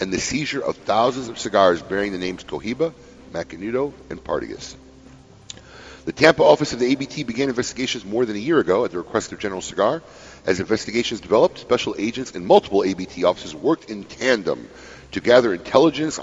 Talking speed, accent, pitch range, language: 180 wpm, American, 95-135 Hz, English